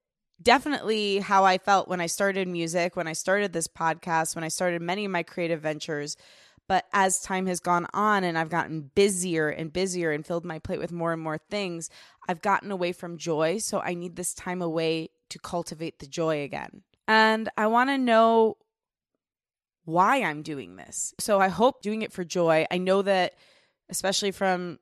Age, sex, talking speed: 20-39, female, 190 wpm